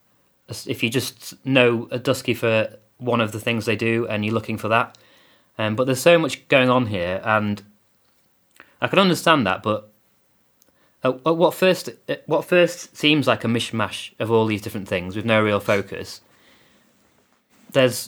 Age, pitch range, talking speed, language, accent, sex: 30-49, 105-125 Hz, 165 wpm, English, British, male